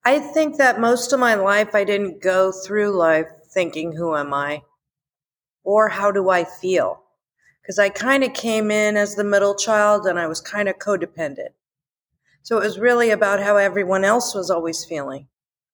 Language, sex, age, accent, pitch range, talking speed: English, female, 40-59, American, 185-225 Hz, 185 wpm